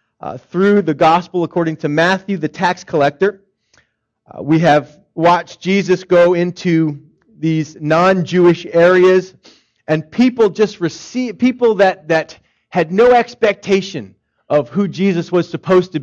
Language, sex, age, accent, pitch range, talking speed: English, male, 40-59, American, 150-190 Hz, 140 wpm